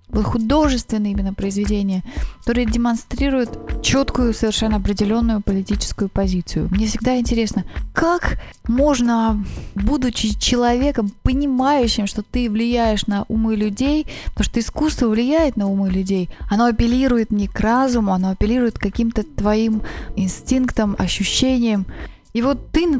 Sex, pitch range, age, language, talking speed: female, 200-245 Hz, 20-39, Russian, 120 wpm